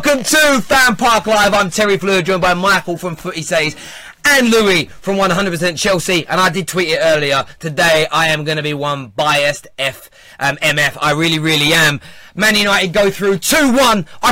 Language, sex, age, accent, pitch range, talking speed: English, male, 20-39, British, 175-245 Hz, 185 wpm